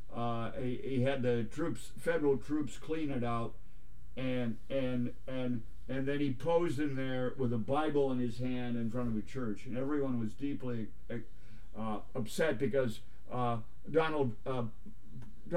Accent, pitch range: American, 110-145 Hz